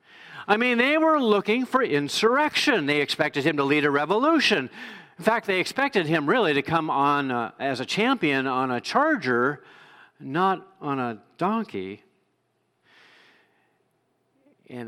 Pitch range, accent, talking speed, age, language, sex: 140-225 Hz, American, 140 wpm, 50-69, English, male